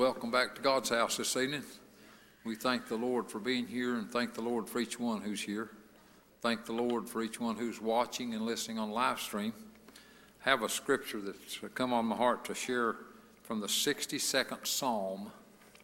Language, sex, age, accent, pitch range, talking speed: English, male, 60-79, American, 115-150 Hz, 195 wpm